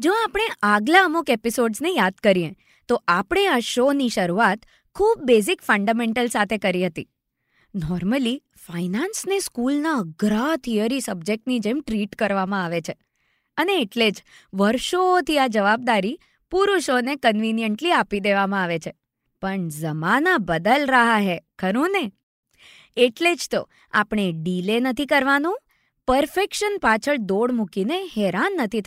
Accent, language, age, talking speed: native, Gujarati, 20-39, 105 wpm